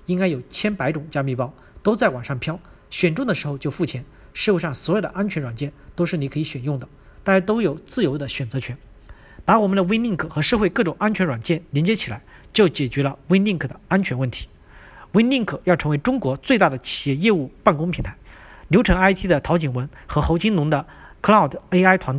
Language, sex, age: Chinese, male, 50-69